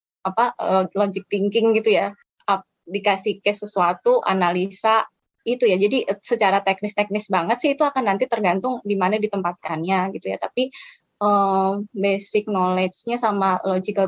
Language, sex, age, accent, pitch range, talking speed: Indonesian, female, 20-39, native, 185-225 Hz, 130 wpm